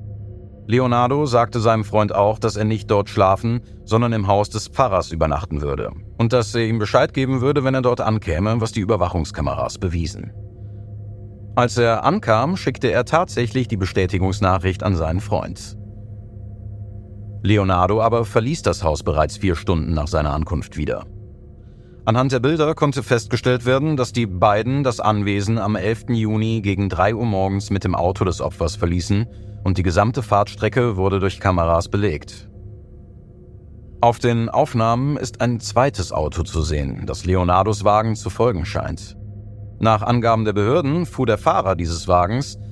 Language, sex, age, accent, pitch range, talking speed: German, male, 40-59, German, 95-115 Hz, 155 wpm